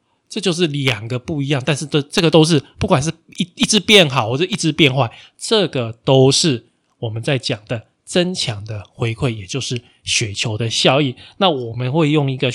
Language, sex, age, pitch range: Chinese, male, 20-39, 120-160 Hz